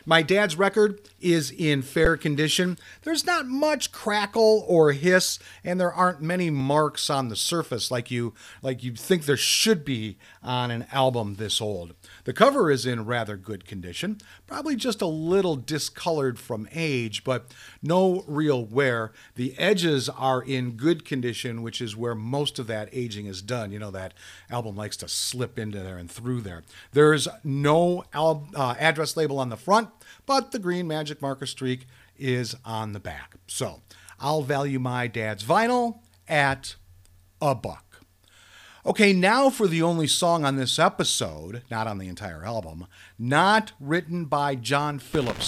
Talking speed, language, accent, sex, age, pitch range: 165 wpm, English, American, male, 40-59, 115-175 Hz